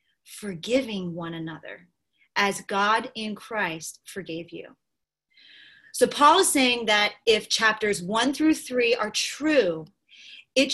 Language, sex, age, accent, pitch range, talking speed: English, female, 30-49, American, 195-265 Hz, 125 wpm